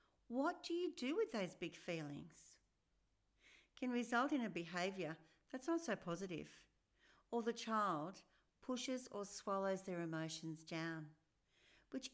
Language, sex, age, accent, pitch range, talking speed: English, female, 60-79, Australian, 165-245 Hz, 135 wpm